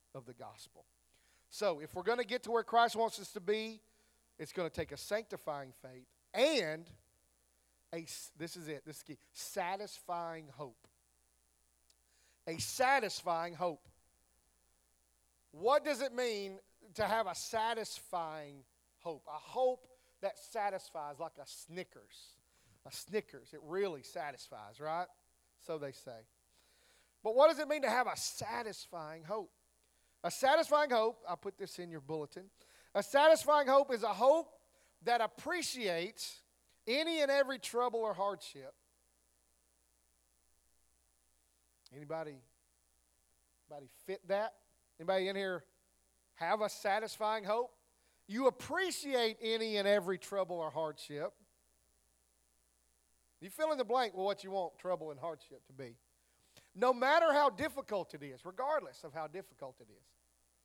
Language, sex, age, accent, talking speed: English, male, 40-59, American, 140 wpm